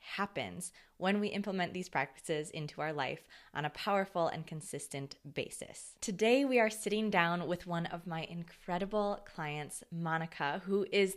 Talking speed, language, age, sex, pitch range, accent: 155 wpm, English, 20-39, female, 165-205 Hz, American